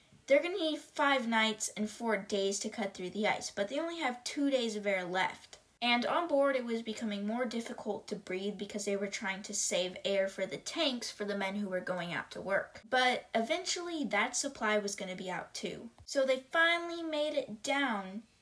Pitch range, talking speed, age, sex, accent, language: 200-265 Hz, 215 wpm, 20-39, female, American, English